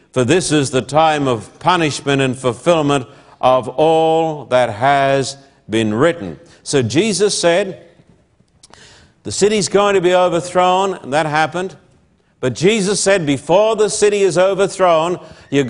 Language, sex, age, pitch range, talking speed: English, male, 60-79, 140-190 Hz, 140 wpm